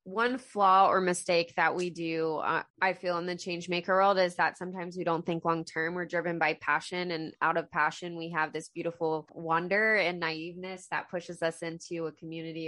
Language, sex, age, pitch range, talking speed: English, female, 20-39, 155-175 Hz, 210 wpm